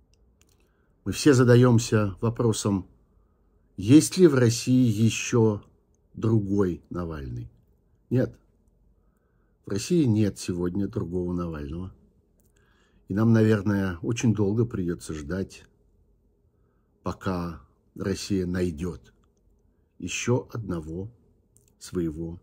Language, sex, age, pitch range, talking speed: Russian, male, 50-69, 85-115 Hz, 85 wpm